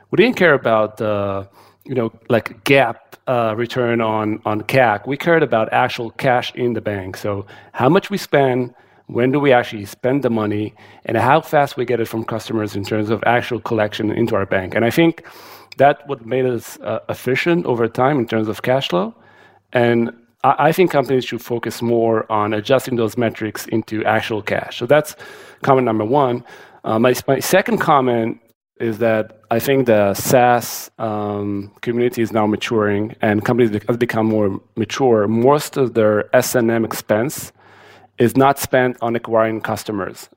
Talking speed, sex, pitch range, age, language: 180 wpm, male, 105-125 Hz, 40-59, Hebrew